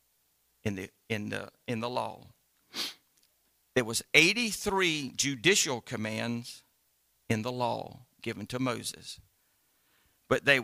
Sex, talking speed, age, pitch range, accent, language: male, 115 wpm, 50-69, 105-160 Hz, American, English